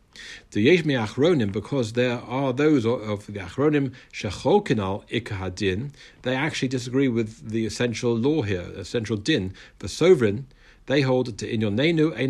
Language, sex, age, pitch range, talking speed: English, male, 50-69, 100-125 Hz, 125 wpm